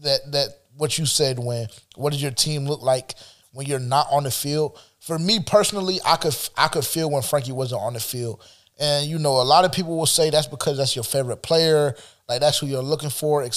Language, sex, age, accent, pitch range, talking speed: English, male, 20-39, American, 130-160 Hz, 240 wpm